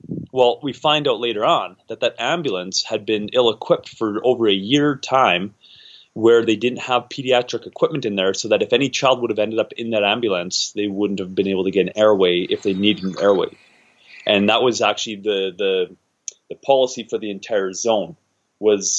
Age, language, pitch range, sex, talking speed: 30-49, English, 105-135 Hz, male, 200 wpm